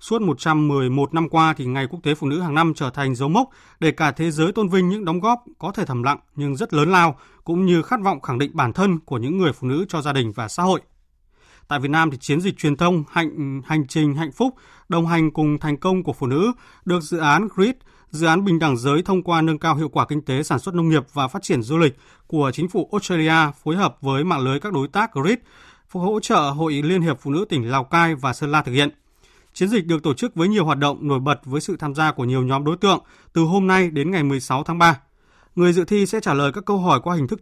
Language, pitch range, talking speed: Vietnamese, 140-180 Hz, 270 wpm